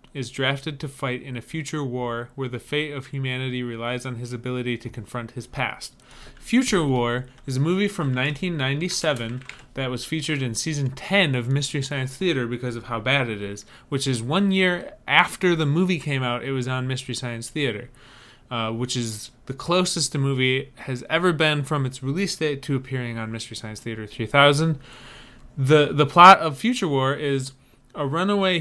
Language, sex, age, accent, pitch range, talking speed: English, male, 20-39, American, 125-155 Hz, 185 wpm